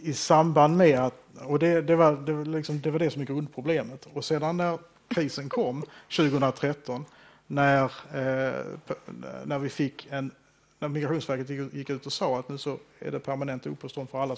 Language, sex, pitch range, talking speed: English, male, 130-160 Hz, 190 wpm